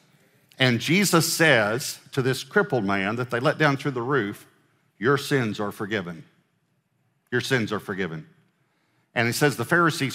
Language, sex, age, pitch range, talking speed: English, male, 50-69, 125-165 Hz, 160 wpm